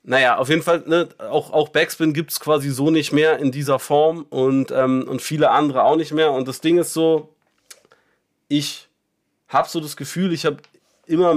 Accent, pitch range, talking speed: German, 135-160 Hz, 190 wpm